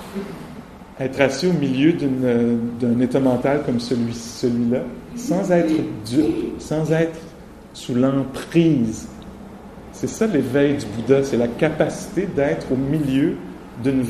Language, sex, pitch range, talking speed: English, male, 115-140 Hz, 130 wpm